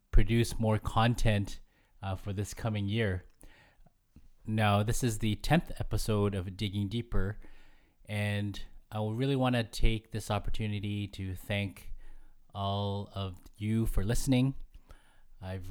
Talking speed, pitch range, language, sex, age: 125 wpm, 95-110 Hz, English, male, 20-39